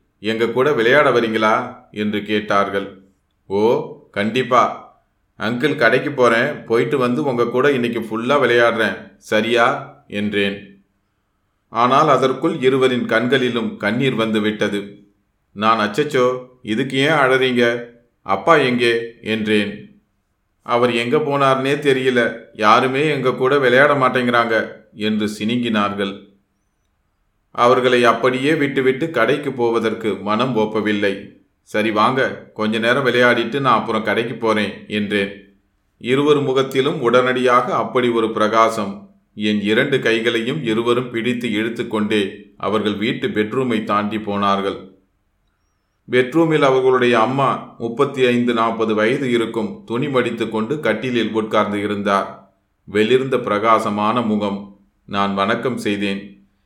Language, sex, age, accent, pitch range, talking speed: Tamil, male, 30-49, native, 105-125 Hz, 105 wpm